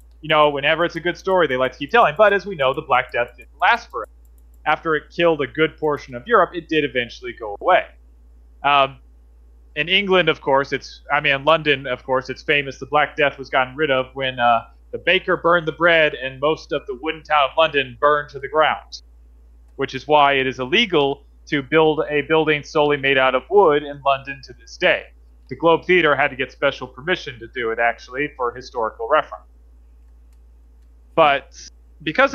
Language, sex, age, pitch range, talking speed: English, male, 30-49, 115-155 Hz, 205 wpm